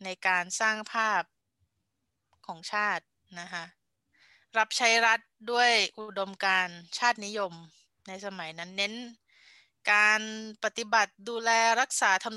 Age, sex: 20-39, female